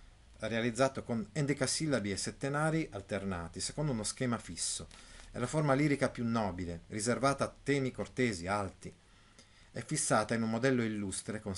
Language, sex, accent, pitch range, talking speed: Italian, male, native, 95-125 Hz, 145 wpm